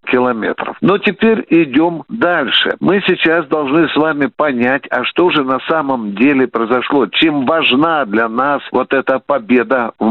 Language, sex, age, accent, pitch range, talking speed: Russian, male, 60-79, native, 130-180 Hz, 150 wpm